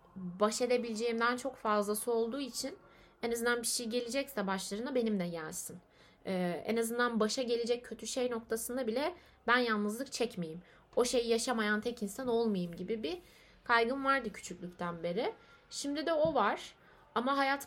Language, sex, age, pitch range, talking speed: Turkish, female, 30-49, 205-245 Hz, 155 wpm